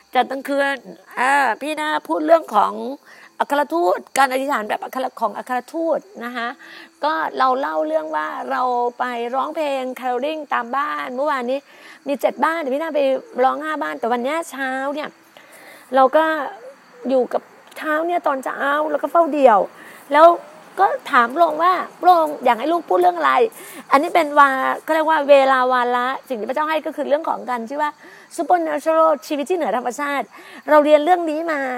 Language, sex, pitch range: Thai, female, 255-310 Hz